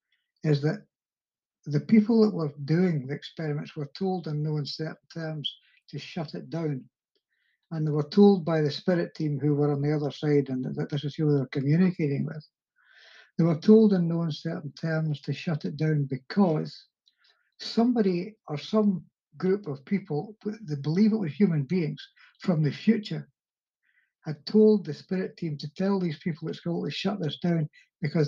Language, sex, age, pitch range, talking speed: English, male, 60-79, 150-190 Hz, 180 wpm